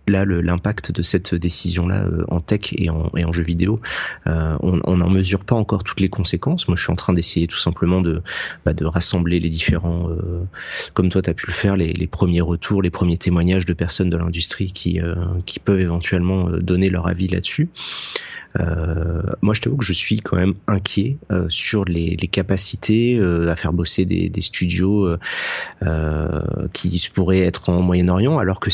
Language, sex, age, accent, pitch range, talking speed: French, male, 30-49, French, 85-100 Hz, 205 wpm